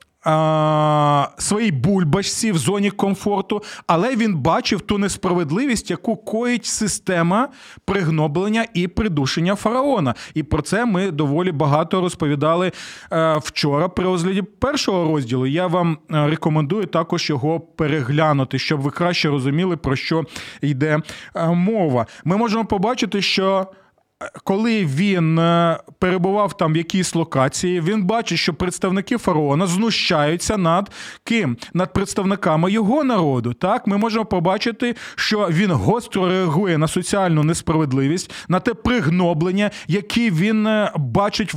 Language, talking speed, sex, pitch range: Ukrainian, 120 wpm, male, 155-200 Hz